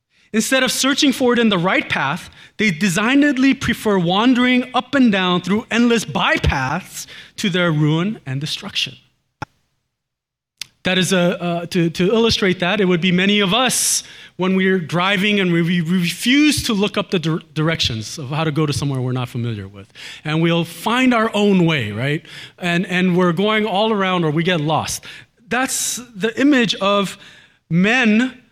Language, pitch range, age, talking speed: English, 155-235 Hz, 30-49, 175 wpm